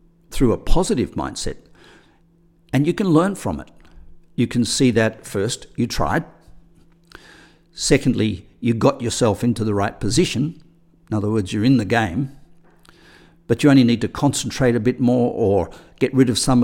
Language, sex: English, male